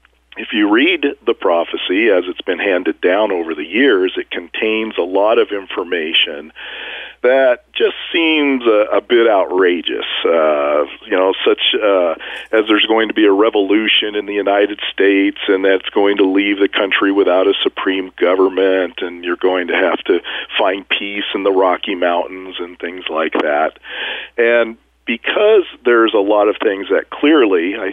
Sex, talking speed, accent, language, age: male, 170 wpm, American, English, 40-59